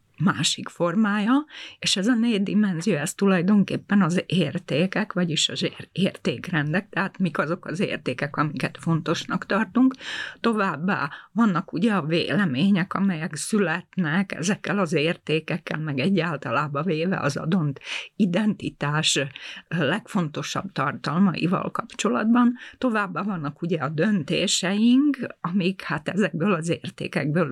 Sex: female